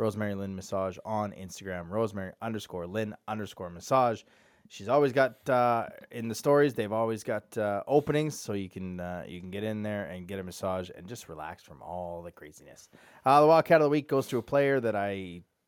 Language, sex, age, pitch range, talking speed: English, male, 20-39, 95-120 Hz, 205 wpm